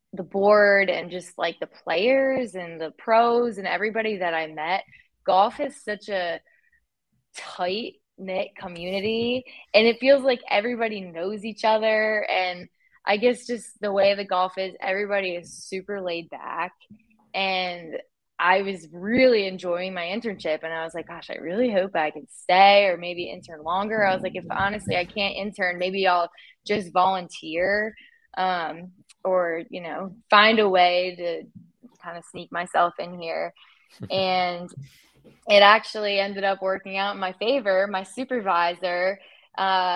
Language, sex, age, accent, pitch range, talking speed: English, female, 20-39, American, 180-210 Hz, 160 wpm